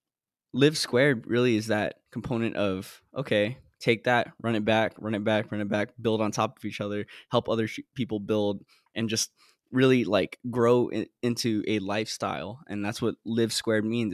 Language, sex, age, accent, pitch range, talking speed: English, male, 10-29, American, 105-120 Hz, 180 wpm